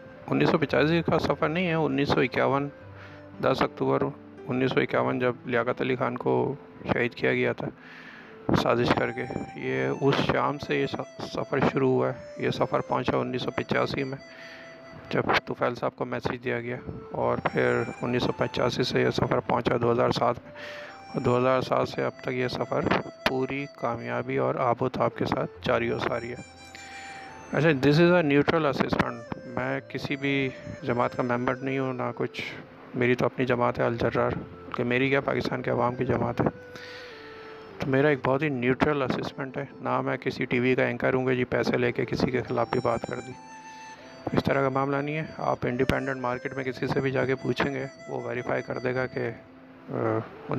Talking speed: 190 wpm